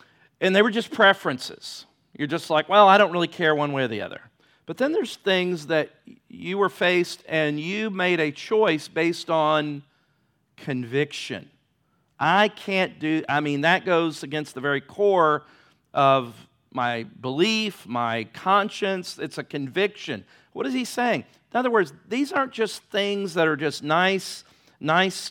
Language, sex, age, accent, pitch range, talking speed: English, male, 50-69, American, 130-180 Hz, 165 wpm